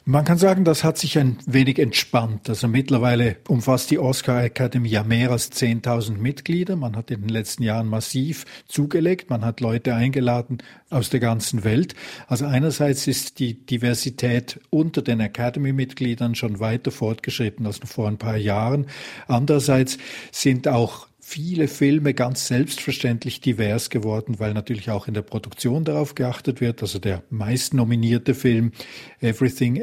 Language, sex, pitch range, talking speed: German, male, 115-135 Hz, 155 wpm